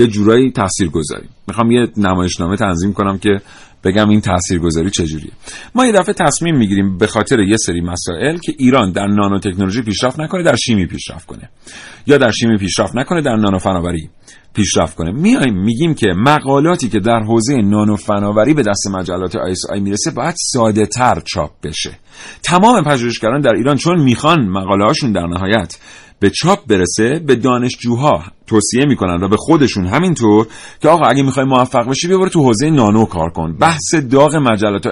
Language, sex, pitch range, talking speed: Persian, male, 100-145 Hz, 170 wpm